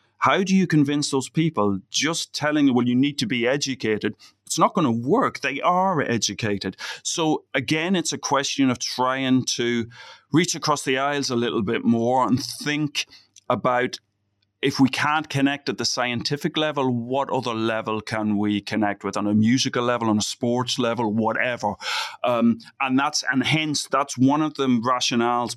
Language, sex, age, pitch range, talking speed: English, male, 30-49, 110-135 Hz, 175 wpm